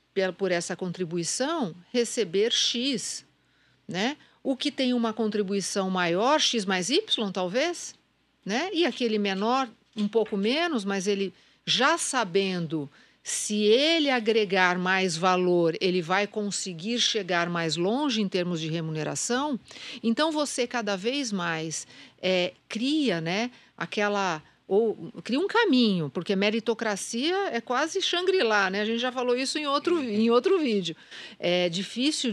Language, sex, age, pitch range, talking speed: Portuguese, female, 50-69, 185-255 Hz, 135 wpm